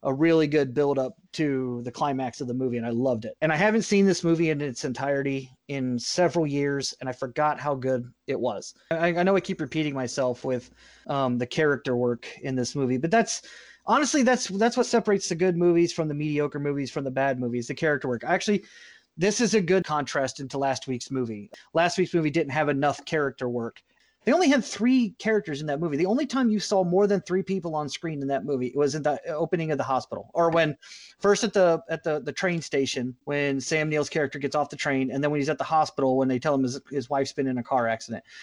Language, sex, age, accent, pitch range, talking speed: English, male, 30-49, American, 135-175 Hz, 240 wpm